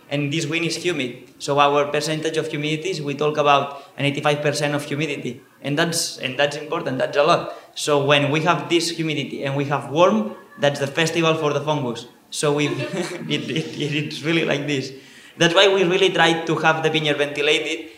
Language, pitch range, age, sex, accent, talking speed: English, 135-155 Hz, 20-39, male, Spanish, 195 wpm